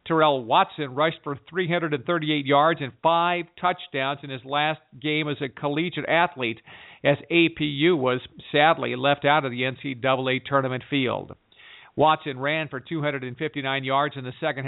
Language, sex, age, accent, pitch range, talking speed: English, male, 50-69, American, 135-165 Hz, 145 wpm